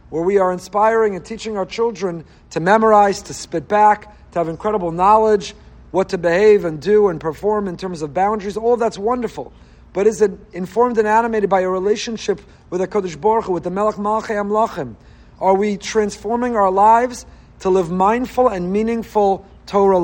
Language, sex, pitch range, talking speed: English, male, 180-225 Hz, 185 wpm